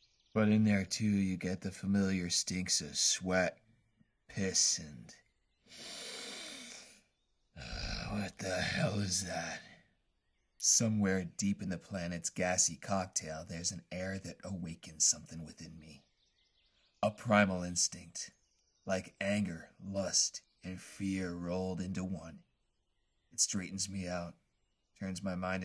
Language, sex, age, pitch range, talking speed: English, male, 30-49, 85-100 Hz, 120 wpm